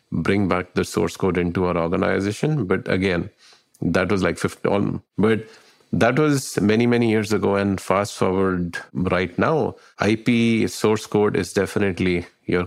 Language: English